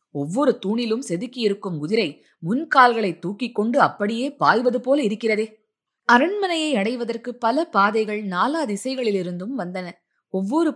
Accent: native